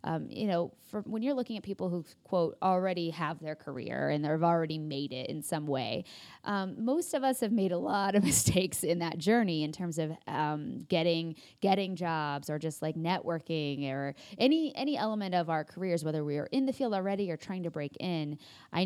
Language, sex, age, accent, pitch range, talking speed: English, female, 20-39, American, 155-210 Hz, 215 wpm